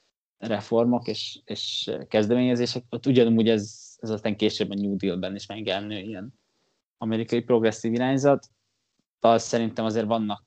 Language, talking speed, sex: Hungarian, 130 wpm, male